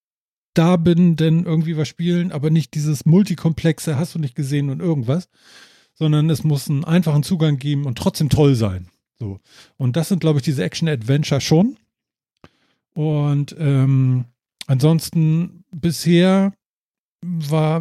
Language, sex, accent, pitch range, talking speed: German, male, German, 130-165 Hz, 140 wpm